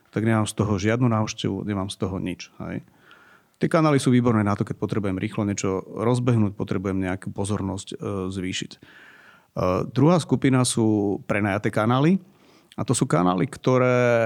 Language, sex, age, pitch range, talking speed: Slovak, male, 40-59, 95-125 Hz, 160 wpm